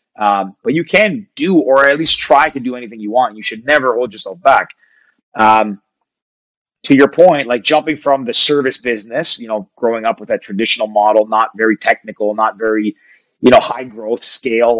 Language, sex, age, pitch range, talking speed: English, male, 30-49, 110-145 Hz, 195 wpm